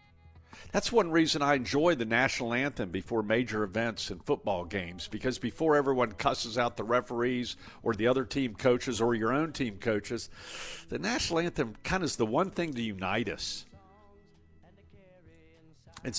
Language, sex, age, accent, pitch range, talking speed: English, male, 50-69, American, 105-150 Hz, 165 wpm